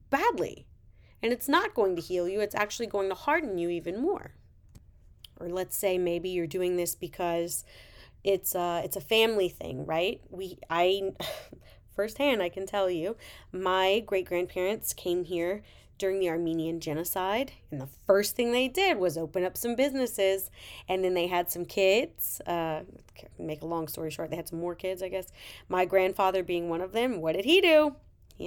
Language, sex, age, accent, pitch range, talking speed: English, female, 30-49, American, 180-305 Hz, 185 wpm